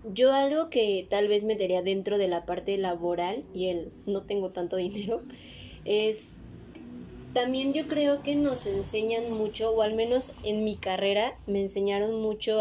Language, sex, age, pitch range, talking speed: Spanish, female, 20-39, 195-240 Hz, 160 wpm